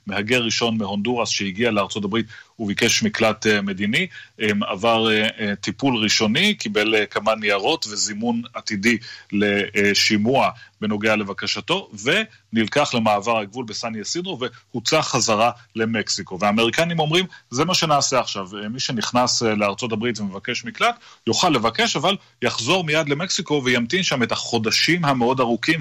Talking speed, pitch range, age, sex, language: 115 wpm, 105-125 Hz, 30-49, male, Hebrew